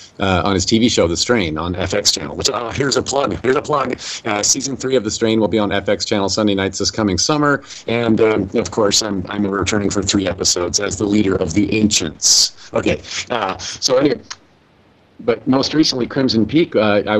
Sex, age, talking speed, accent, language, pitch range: male, 50-69, 215 wpm, American, English, 95-110 Hz